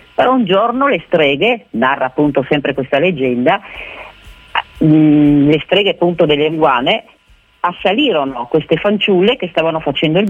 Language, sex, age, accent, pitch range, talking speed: Italian, female, 40-59, native, 150-215 Hz, 130 wpm